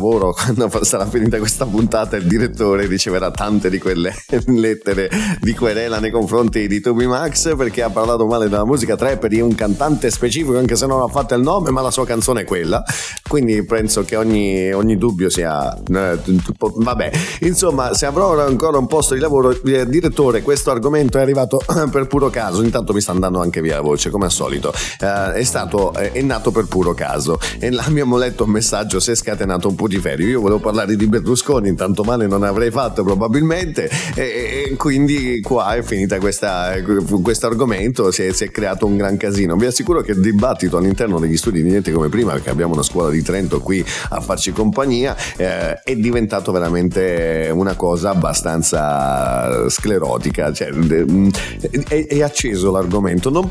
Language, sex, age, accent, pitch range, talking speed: Italian, male, 30-49, native, 95-130 Hz, 175 wpm